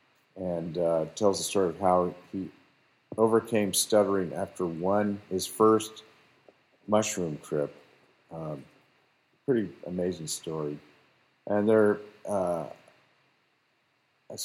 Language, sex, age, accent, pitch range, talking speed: English, male, 50-69, American, 85-105 Hz, 95 wpm